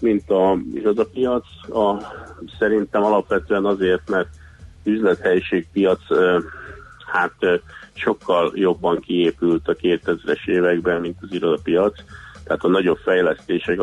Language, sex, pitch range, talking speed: Hungarian, male, 85-120 Hz, 95 wpm